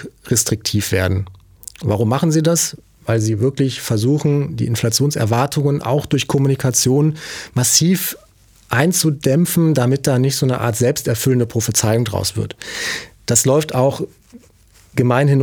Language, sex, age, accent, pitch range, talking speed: German, male, 30-49, German, 115-145 Hz, 120 wpm